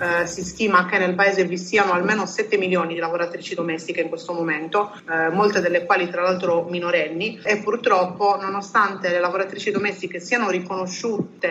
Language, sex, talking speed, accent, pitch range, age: Italian, female, 165 wpm, native, 175-200 Hz, 30-49